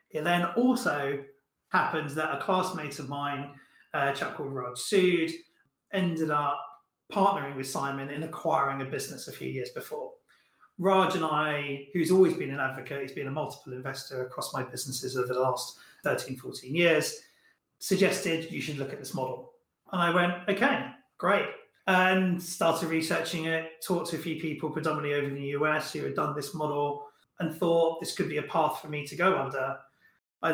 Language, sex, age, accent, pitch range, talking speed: English, male, 30-49, British, 145-175 Hz, 185 wpm